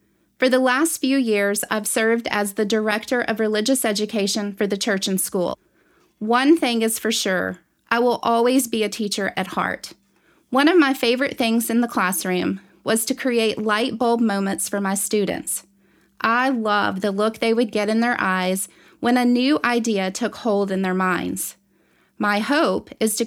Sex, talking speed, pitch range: female, 185 wpm, 205-250 Hz